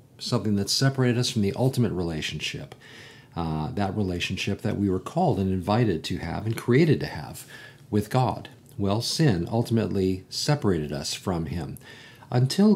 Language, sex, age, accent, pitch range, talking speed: English, male, 50-69, American, 95-130 Hz, 155 wpm